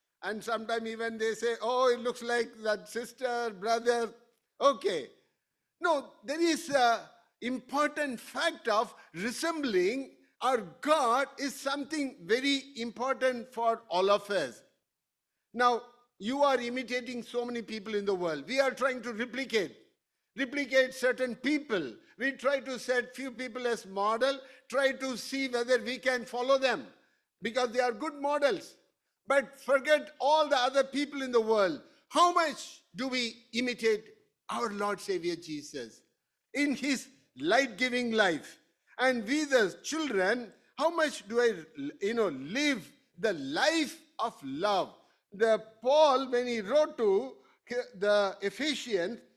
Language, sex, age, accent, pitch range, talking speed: English, male, 60-79, Indian, 230-280 Hz, 140 wpm